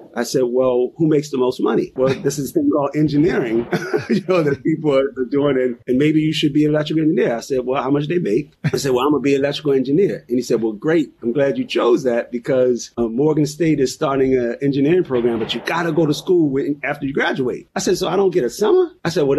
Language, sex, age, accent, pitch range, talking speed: English, male, 30-49, American, 120-150 Hz, 275 wpm